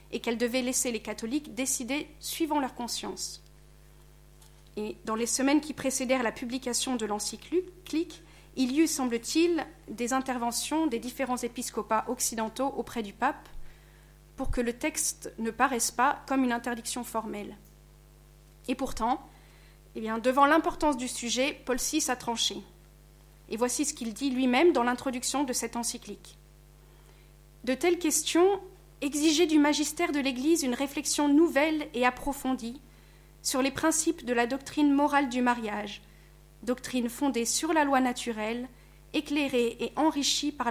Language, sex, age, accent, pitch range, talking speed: French, female, 40-59, French, 235-290 Hz, 145 wpm